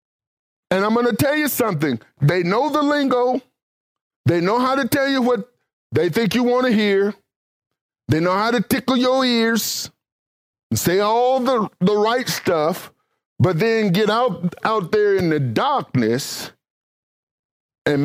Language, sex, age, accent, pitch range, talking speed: English, male, 50-69, American, 140-220 Hz, 160 wpm